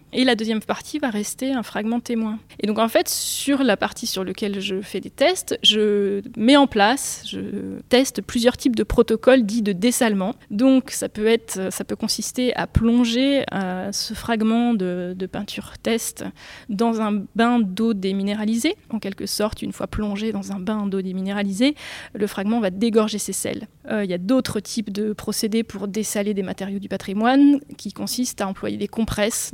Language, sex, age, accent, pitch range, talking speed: French, female, 20-39, French, 205-245 Hz, 190 wpm